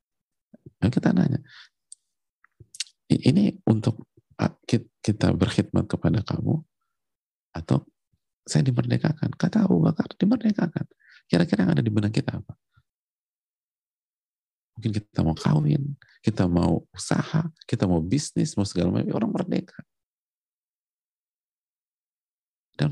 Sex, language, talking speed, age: male, Indonesian, 105 wpm, 40-59